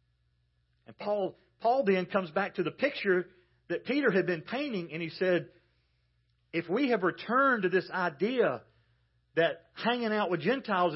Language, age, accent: English, 40-59, American